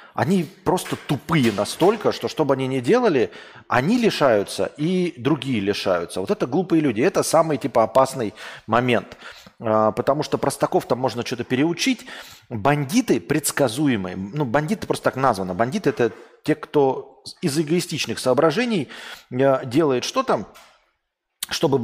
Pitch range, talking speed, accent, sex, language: 115-170 Hz, 130 wpm, native, male, Russian